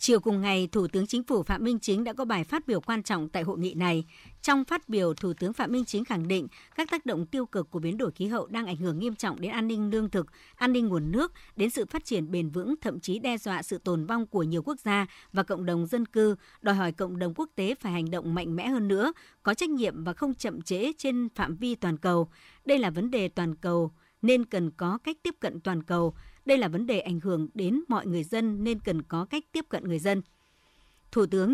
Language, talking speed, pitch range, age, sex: Vietnamese, 260 wpm, 175-240 Hz, 60-79, male